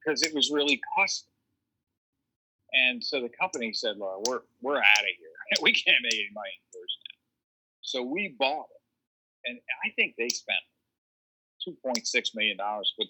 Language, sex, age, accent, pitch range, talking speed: English, male, 50-69, American, 105-150 Hz, 160 wpm